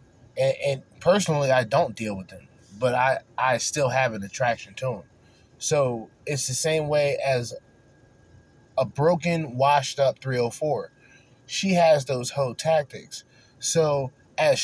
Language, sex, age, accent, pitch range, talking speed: English, male, 20-39, American, 120-155 Hz, 140 wpm